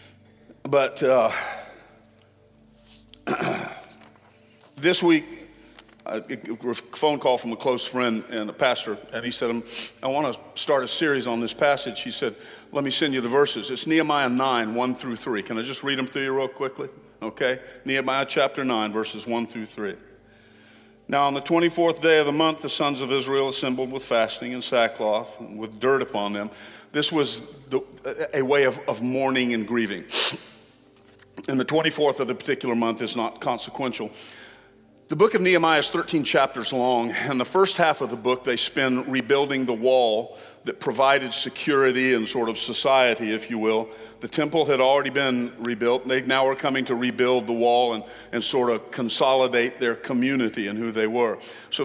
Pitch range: 115-140 Hz